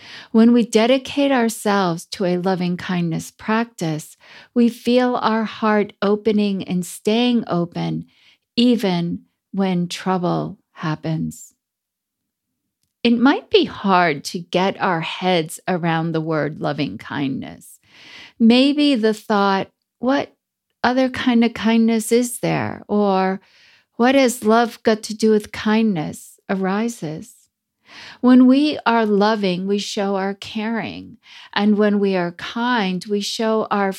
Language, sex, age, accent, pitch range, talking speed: English, female, 50-69, American, 180-230 Hz, 120 wpm